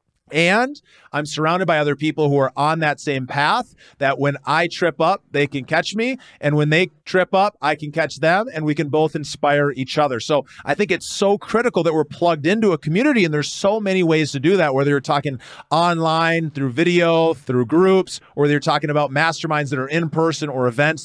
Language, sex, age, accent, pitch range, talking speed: English, male, 30-49, American, 140-165 Hz, 215 wpm